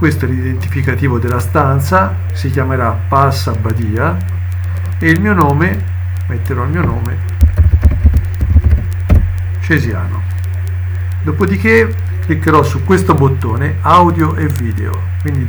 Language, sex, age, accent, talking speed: Italian, male, 50-69, native, 105 wpm